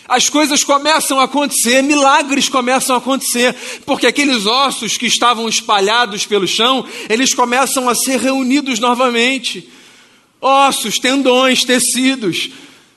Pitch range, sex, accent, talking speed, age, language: 210-260 Hz, male, Brazilian, 120 wpm, 40-59, Portuguese